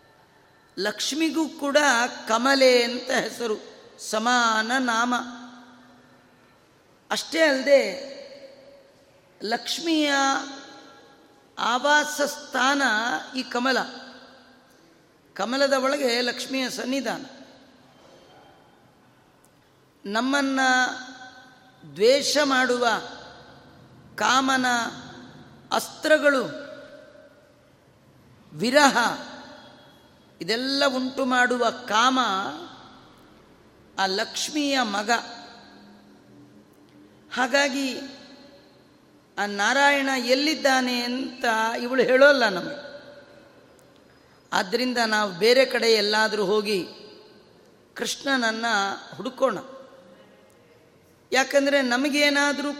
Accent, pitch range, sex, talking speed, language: native, 240-280 Hz, female, 55 wpm, Kannada